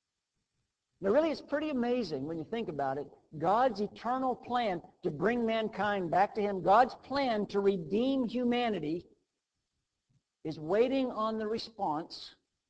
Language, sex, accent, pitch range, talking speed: English, male, American, 140-210 Hz, 135 wpm